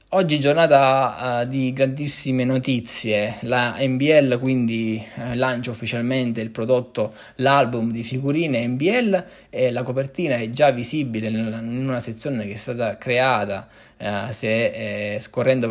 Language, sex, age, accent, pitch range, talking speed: Italian, male, 20-39, native, 110-130 Hz, 120 wpm